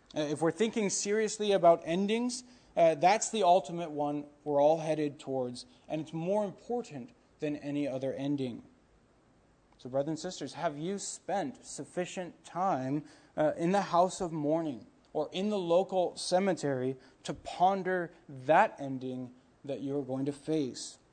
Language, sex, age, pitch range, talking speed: English, male, 20-39, 150-200 Hz, 150 wpm